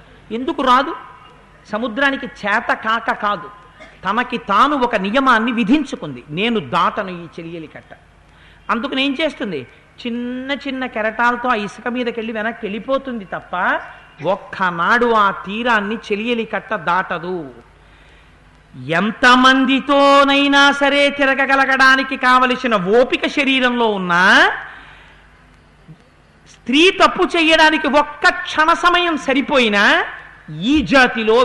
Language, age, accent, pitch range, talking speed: Telugu, 50-69, native, 205-260 Hz, 95 wpm